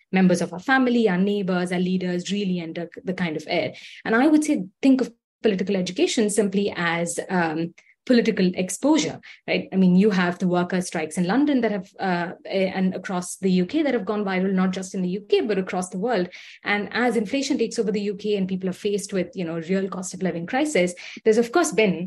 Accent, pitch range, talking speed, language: Indian, 180-225 Hz, 215 wpm, English